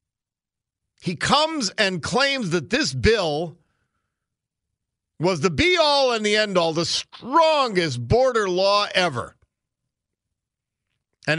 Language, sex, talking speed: English, male, 110 wpm